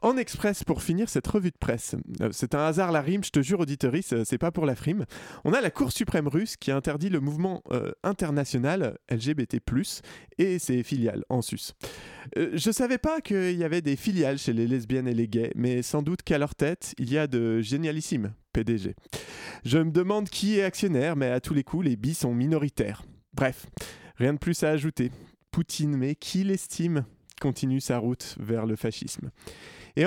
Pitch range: 125-175 Hz